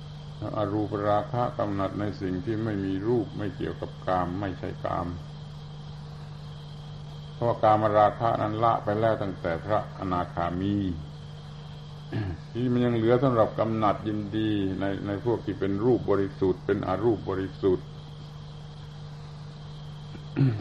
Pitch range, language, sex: 100-150 Hz, Thai, male